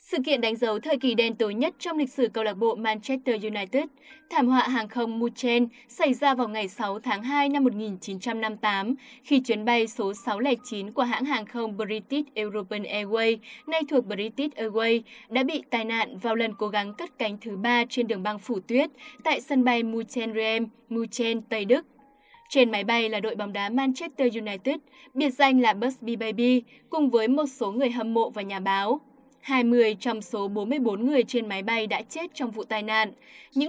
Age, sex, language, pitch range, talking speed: 10-29, female, Vietnamese, 220-265 Hz, 195 wpm